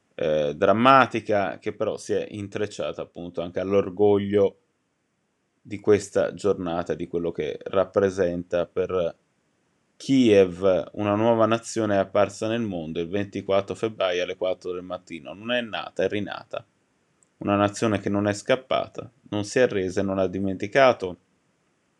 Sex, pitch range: male, 95-120 Hz